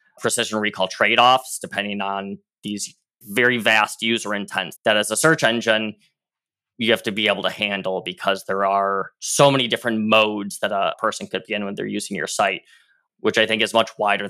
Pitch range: 100-115 Hz